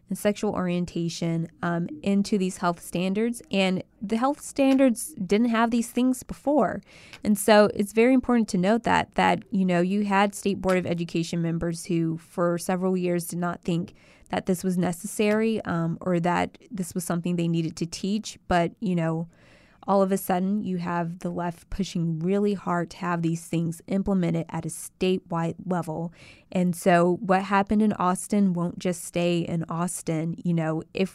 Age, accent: 20-39, American